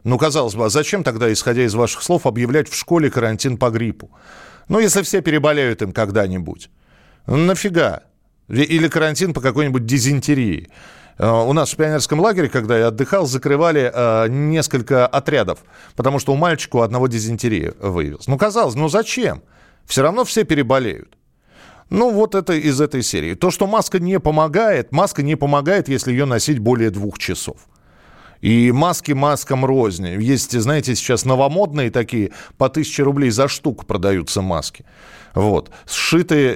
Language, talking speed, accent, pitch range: Russian, 150 wpm, native, 115-155 Hz